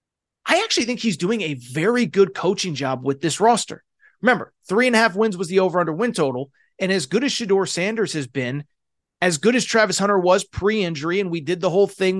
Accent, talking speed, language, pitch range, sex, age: American, 230 wpm, English, 165-220 Hz, male, 30-49